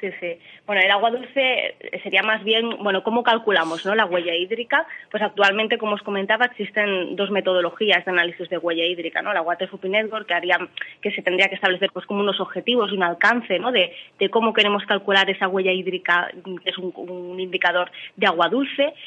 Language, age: Spanish, 20-39